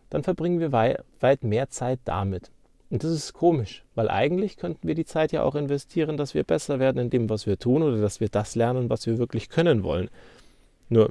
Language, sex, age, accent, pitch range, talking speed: German, male, 40-59, German, 110-150 Hz, 215 wpm